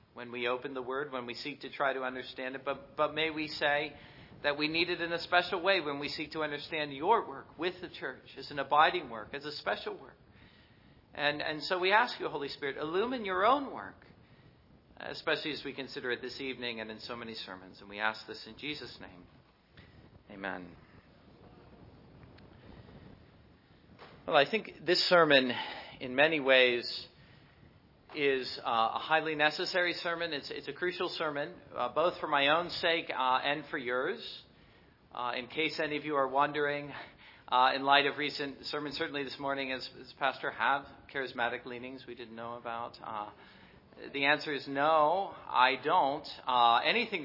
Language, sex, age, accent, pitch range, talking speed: English, male, 40-59, American, 125-155 Hz, 180 wpm